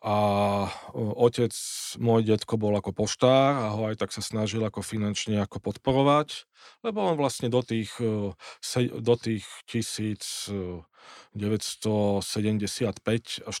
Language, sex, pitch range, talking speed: Slovak, male, 100-115 Hz, 125 wpm